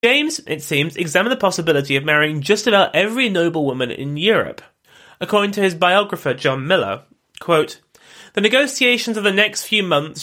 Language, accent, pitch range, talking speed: English, British, 150-215 Hz, 160 wpm